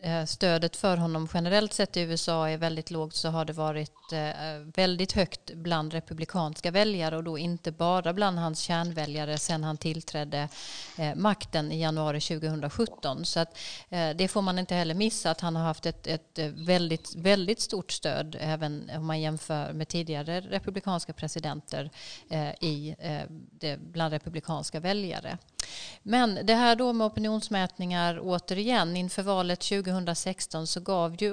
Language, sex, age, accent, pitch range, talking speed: Swedish, female, 40-59, native, 160-185 Hz, 145 wpm